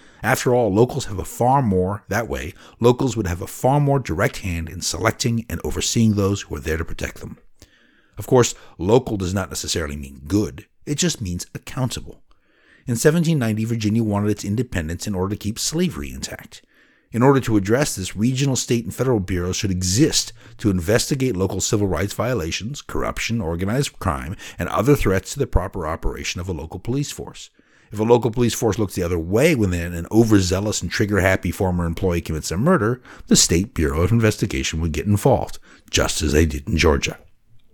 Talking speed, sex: 190 wpm, male